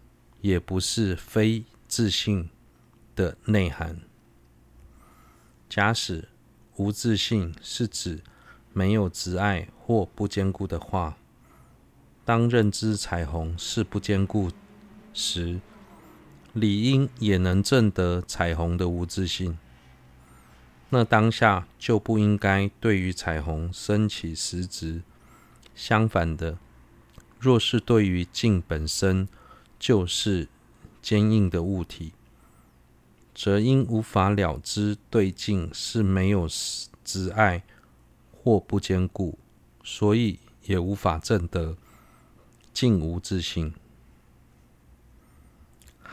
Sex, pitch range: male, 85-110 Hz